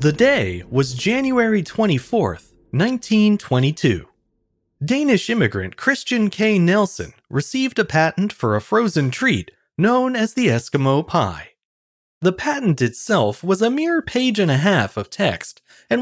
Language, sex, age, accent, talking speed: English, male, 30-49, American, 135 wpm